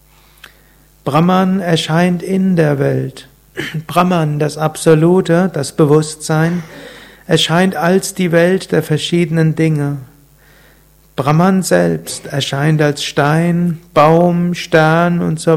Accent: German